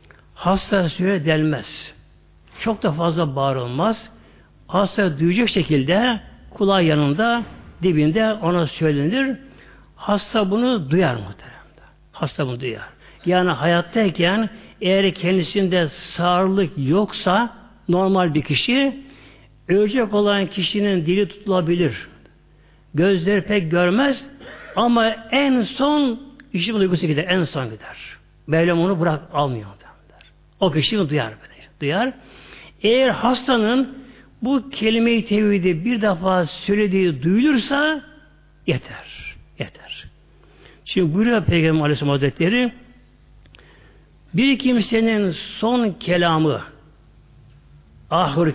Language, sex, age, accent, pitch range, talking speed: Turkish, male, 60-79, native, 155-225 Hz, 95 wpm